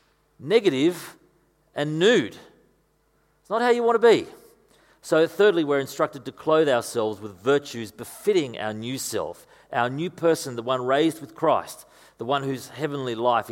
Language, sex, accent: English, male, Australian